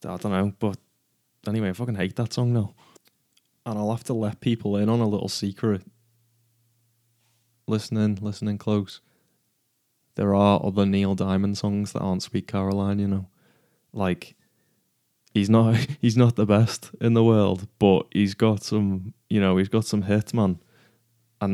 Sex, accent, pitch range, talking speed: male, British, 100-120 Hz, 165 wpm